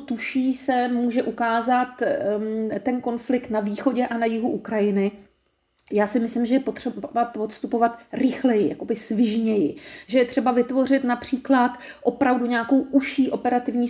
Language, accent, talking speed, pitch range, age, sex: Czech, native, 135 wpm, 210-275 Hz, 40-59, female